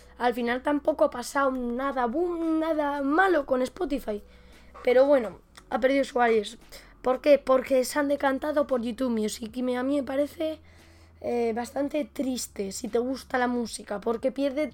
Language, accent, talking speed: Spanish, Spanish, 165 wpm